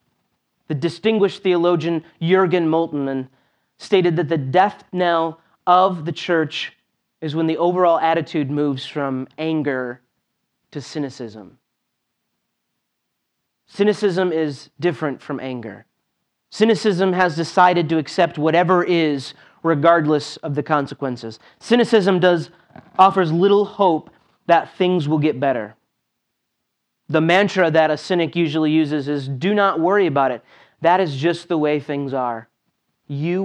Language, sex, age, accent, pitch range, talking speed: English, male, 30-49, American, 140-175 Hz, 125 wpm